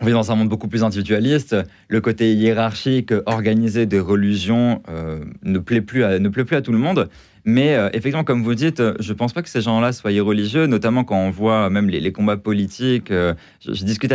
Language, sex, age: French, male, 20-39